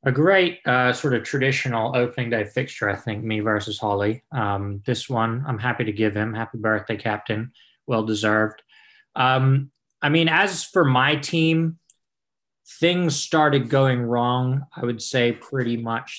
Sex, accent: male, American